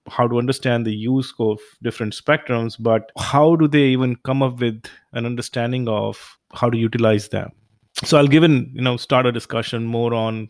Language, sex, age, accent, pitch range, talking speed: English, male, 30-49, Indian, 115-135 Hz, 195 wpm